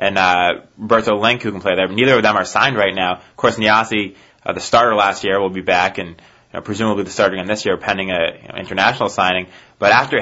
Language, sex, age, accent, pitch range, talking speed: English, male, 20-39, American, 95-115 Hz, 255 wpm